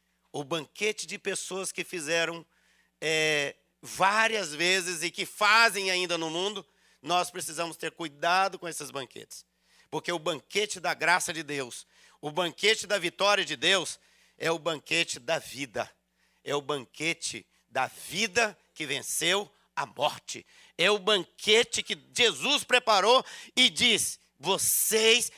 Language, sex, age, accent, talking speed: Portuguese, male, 50-69, Brazilian, 135 wpm